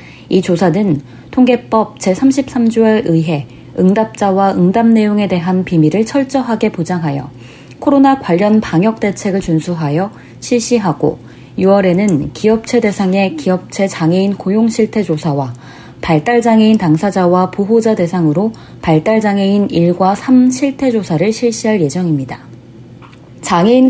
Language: Korean